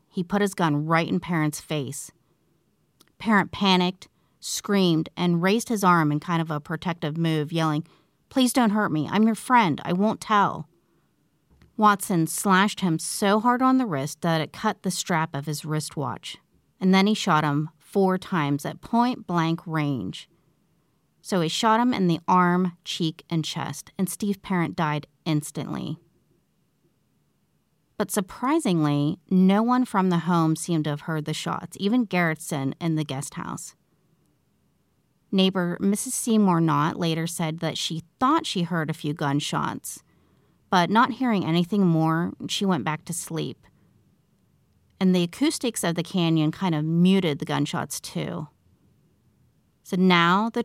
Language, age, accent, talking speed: English, 30-49, American, 155 wpm